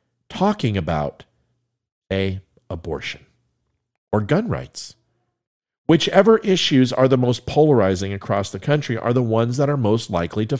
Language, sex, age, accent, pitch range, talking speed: English, male, 50-69, American, 110-150 Hz, 135 wpm